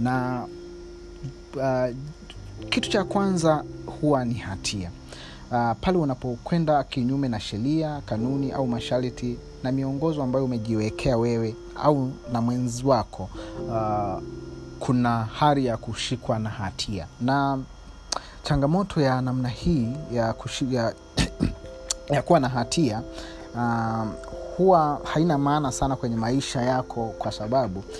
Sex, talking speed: male, 110 wpm